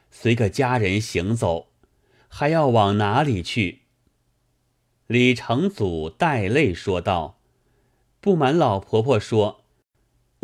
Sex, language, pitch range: male, Chinese, 105-140 Hz